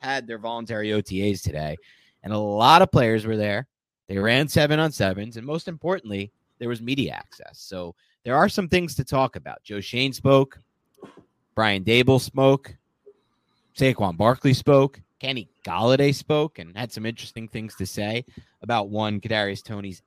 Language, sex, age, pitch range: English, male, 30-49, 105-135 Hz